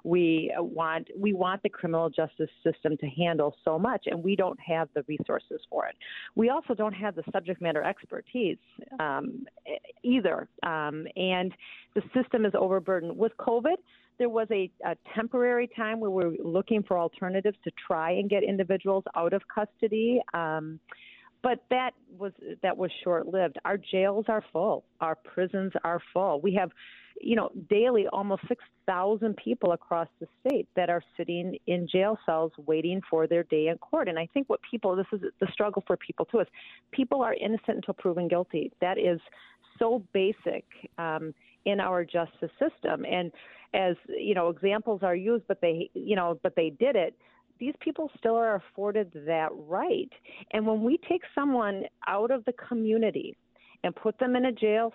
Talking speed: 180 wpm